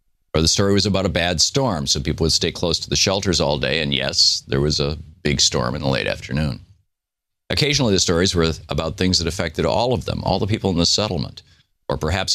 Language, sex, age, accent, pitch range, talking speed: English, male, 50-69, American, 75-95 Hz, 235 wpm